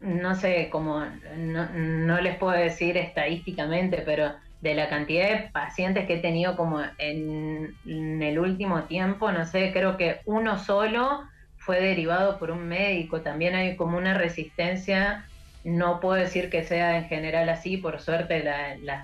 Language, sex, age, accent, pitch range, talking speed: Spanish, female, 30-49, Argentinian, 155-190 Hz, 165 wpm